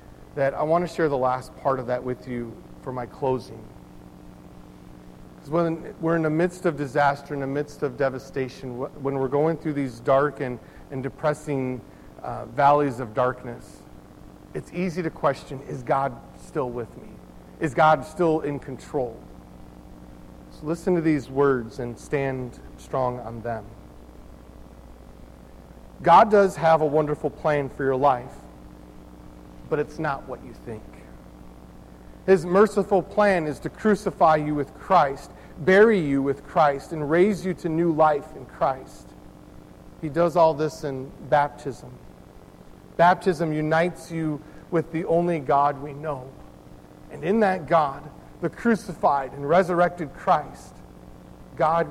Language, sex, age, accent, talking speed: English, male, 40-59, American, 145 wpm